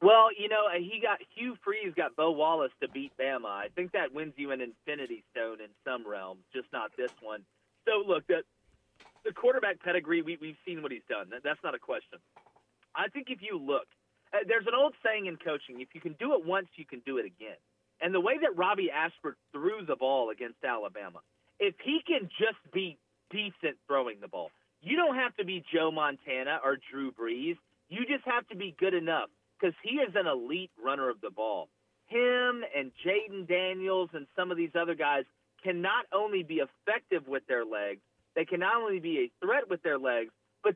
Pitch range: 150-210 Hz